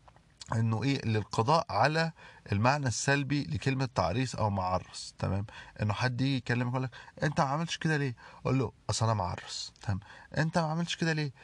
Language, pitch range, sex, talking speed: Arabic, 100-145 Hz, male, 175 wpm